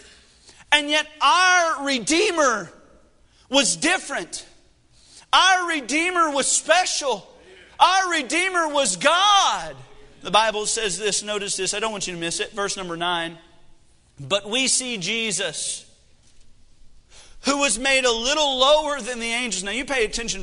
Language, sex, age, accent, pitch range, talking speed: English, male, 40-59, American, 180-275 Hz, 140 wpm